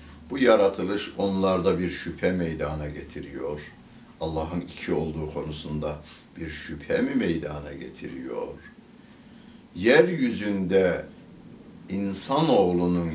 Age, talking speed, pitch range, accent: 60-79, 80 wpm, 80-105 Hz, native